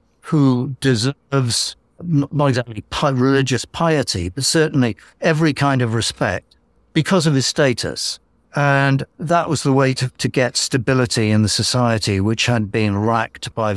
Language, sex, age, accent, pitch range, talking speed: English, male, 60-79, British, 115-145 Hz, 145 wpm